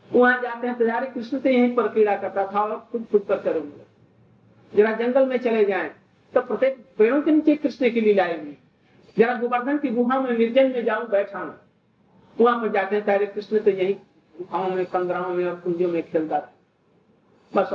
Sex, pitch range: male, 200-245 Hz